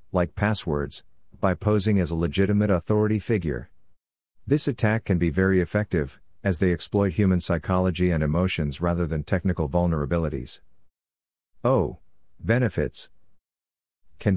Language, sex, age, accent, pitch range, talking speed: English, male, 50-69, American, 80-105 Hz, 120 wpm